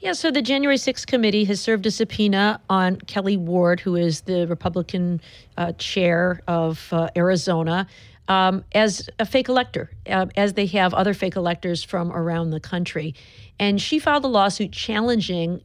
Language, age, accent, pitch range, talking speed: English, 50-69, American, 165-200 Hz, 170 wpm